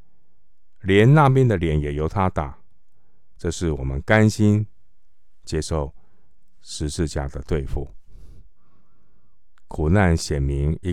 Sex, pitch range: male, 75-95 Hz